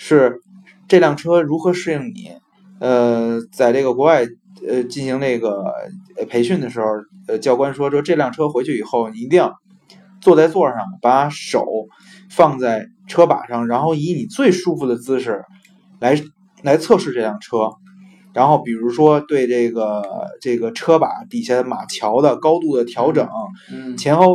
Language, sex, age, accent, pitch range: Chinese, male, 20-39, native, 125-190 Hz